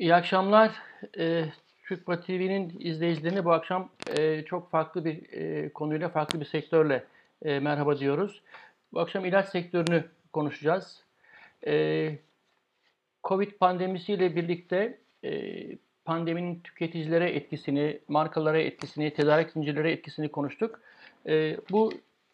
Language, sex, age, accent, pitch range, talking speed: Turkish, male, 60-79, native, 150-180 Hz, 110 wpm